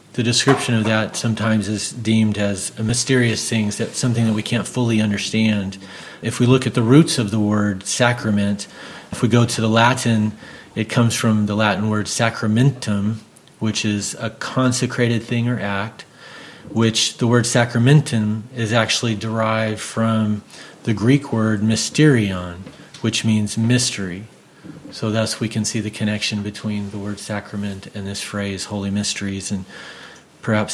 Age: 40-59